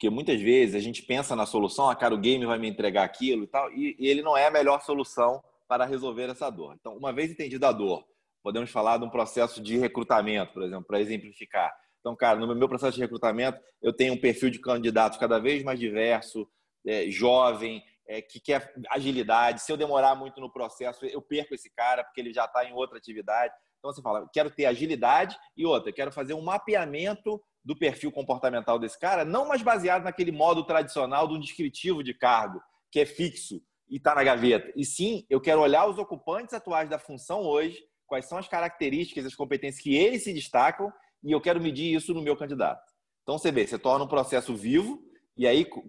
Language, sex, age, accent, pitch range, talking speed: Portuguese, male, 20-39, Brazilian, 120-160 Hz, 205 wpm